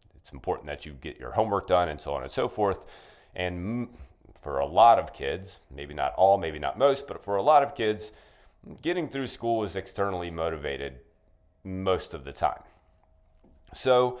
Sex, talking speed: male, 185 wpm